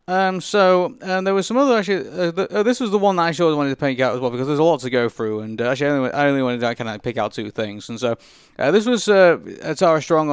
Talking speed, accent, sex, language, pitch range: 300 wpm, British, male, English, 125-160 Hz